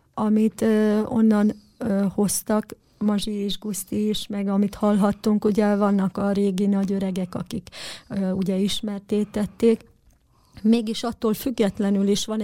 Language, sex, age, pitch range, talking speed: Hungarian, female, 30-49, 195-215 Hz, 110 wpm